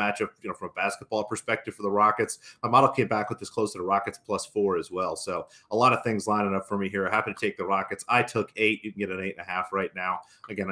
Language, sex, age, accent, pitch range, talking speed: English, male, 30-49, American, 100-115 Hz, 300 wpm